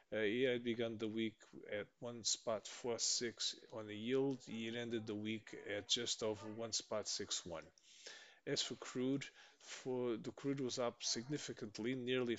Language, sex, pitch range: English, male, 95-115 Hz